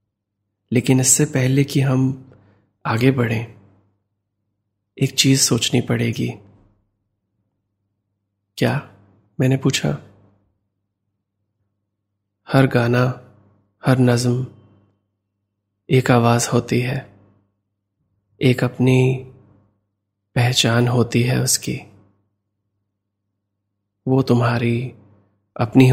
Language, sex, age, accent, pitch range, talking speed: Hindi, male, 20-39, native, 100-125 Hz, 70 wpm